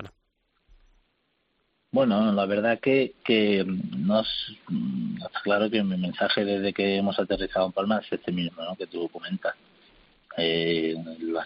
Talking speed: 135 wpm